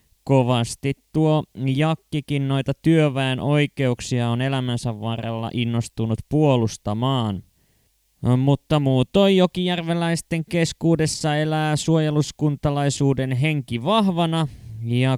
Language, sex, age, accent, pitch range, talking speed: Finnish, male, 20-39, native, 120-155 Hz, 80 wpm